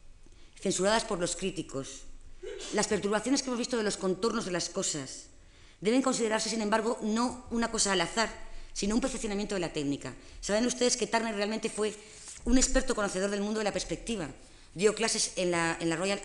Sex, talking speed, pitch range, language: female, 190 wpm, 170-220 Hz, Spanish